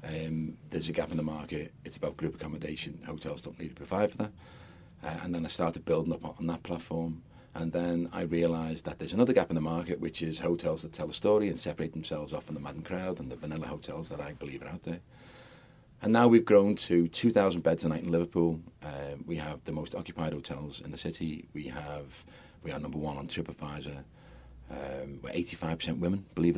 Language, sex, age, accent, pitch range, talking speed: English, male, 40-59, British, 80-90 Hz, 220 wpm